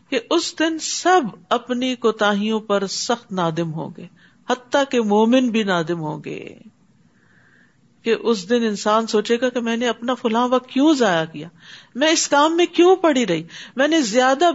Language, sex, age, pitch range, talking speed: Urdu, female, 50-69, 190-265 Hz, 175 wpm